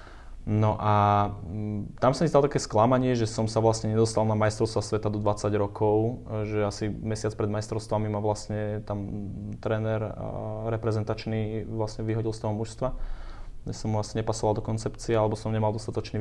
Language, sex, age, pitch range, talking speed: Slovak, male, 20-39, 105-115 Hz, 165 wpm